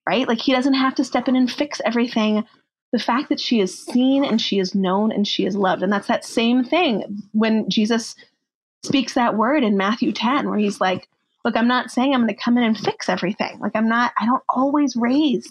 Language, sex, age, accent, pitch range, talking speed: English, female, 30-49, American, 200-255 Hz, 230 wpm